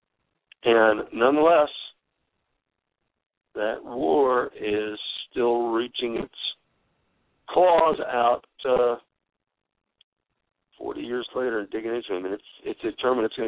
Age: 60-79